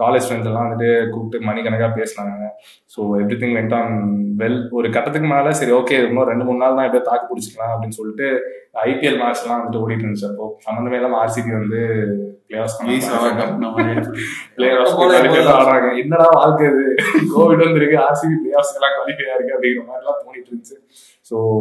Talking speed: 140 wpm